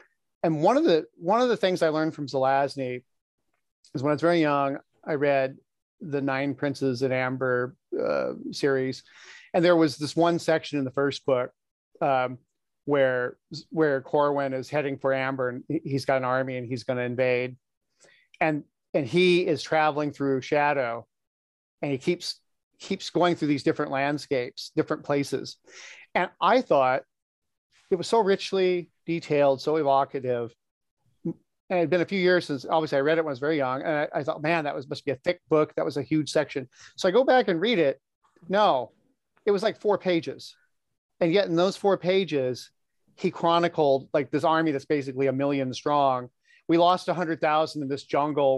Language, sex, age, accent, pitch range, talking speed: English, male, 40-59, American, 135-165 Hz, 190 wpm